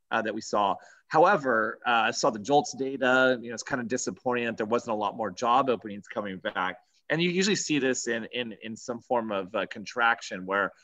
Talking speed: 225 wpm